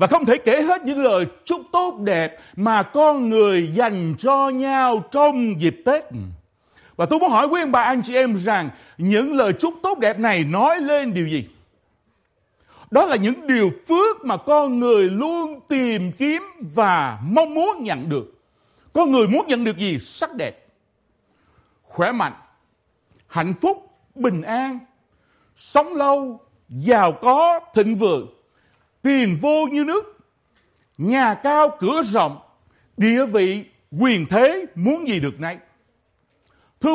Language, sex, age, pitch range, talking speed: Vietnamese, male, 60-79, 210-310 Hz, 150 wpm